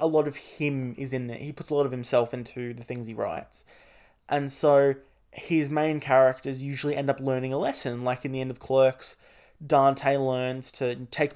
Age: 20-39